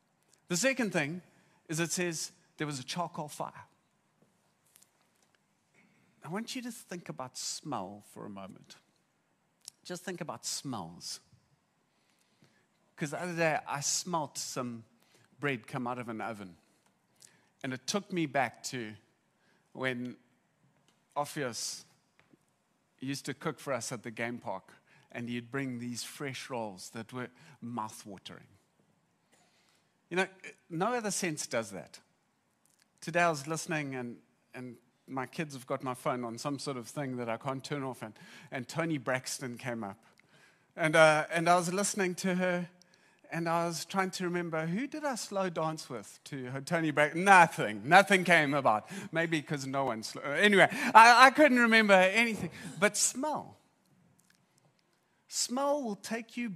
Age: 40-59